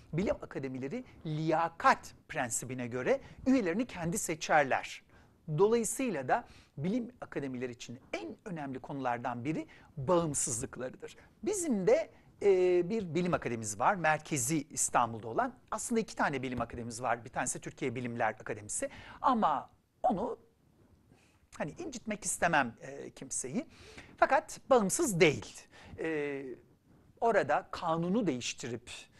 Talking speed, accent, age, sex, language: 110 wpm, native, 60-79, male, Turkish